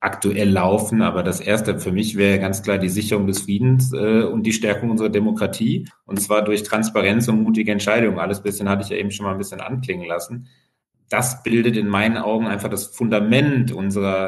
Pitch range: 105-125 Hz